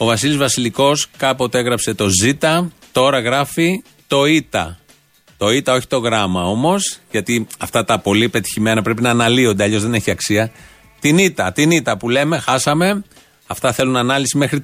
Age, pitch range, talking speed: 30-49, 120-160 Hz, 170 wpm